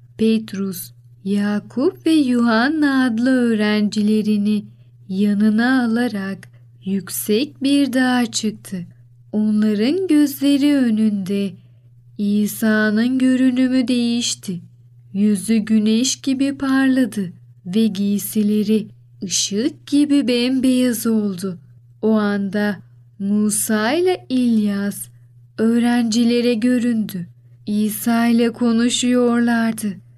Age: 30-49